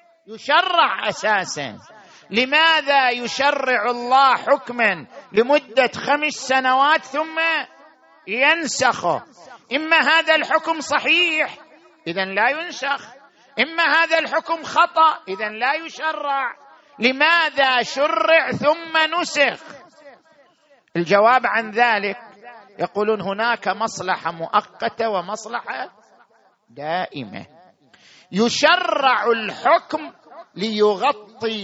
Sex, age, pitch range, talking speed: male, 50-69, 215-300 Hz, 80 wpm